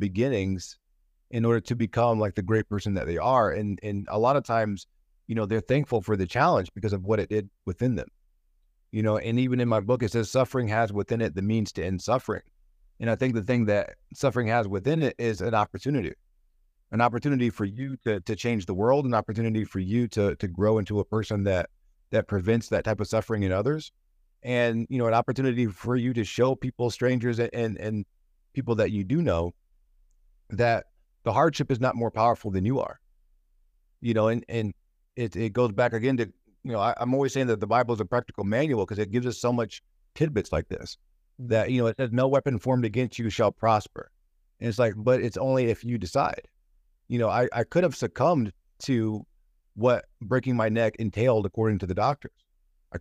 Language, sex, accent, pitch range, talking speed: English, male, American, 100-120 Hz, 215 wpm